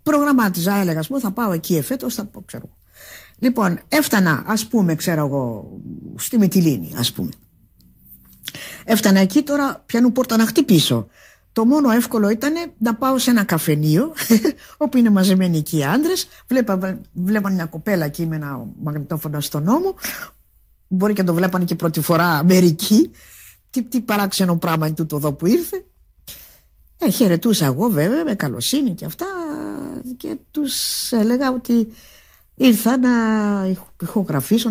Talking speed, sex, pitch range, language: 145 wpm, female, 165-250 Hz, Greek